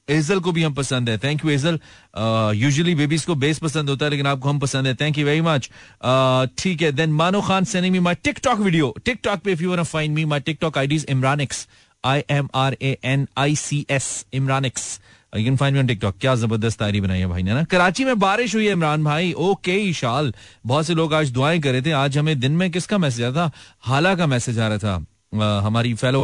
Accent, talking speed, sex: native, 130 wpm, male